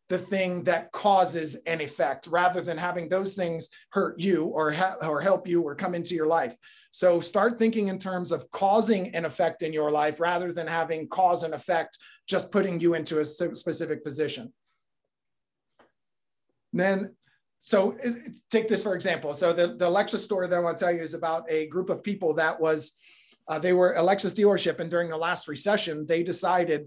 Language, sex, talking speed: English, male, 190 wpm